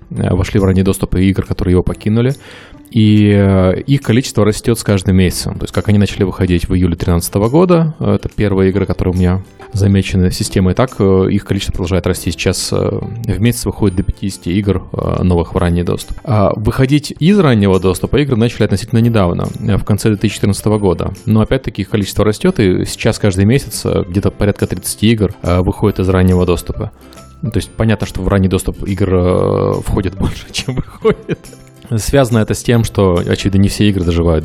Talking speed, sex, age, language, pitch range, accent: 180 wpm, male, 20-39, Russian, 90-110 Hz, native